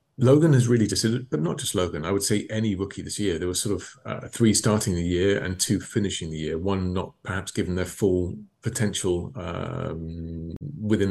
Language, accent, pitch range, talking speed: English, British, 90-120 Hz, 205 wpm